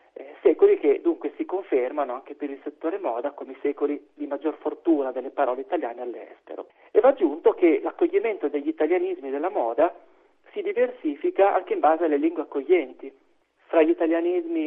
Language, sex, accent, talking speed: Italian, male, native, 165 wpm